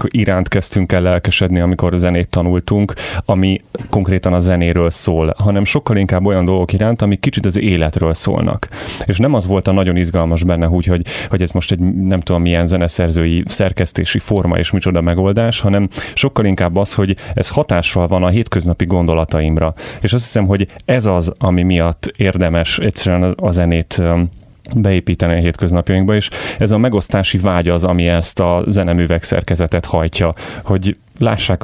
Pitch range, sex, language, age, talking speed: 85-100 Hz, male, Hungarian, 30-49, 165 wpm